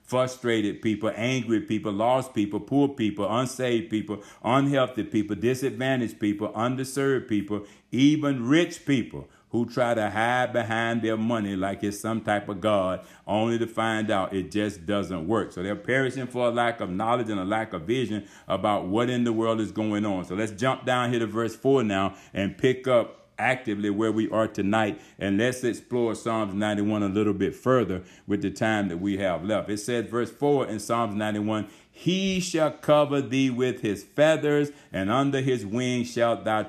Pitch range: 105-130 Hz